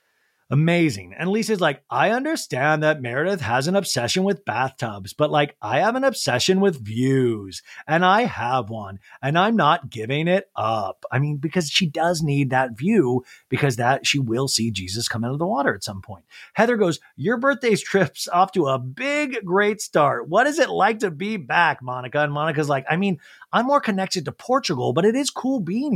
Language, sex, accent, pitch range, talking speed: English, male, American, 125-190 Hz, 200 wpm